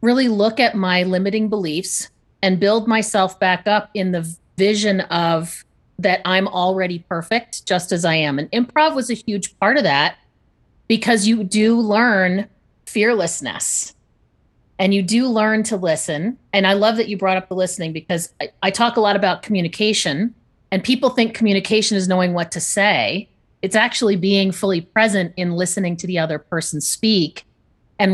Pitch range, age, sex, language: 175-215 Hz, 30-49, female, English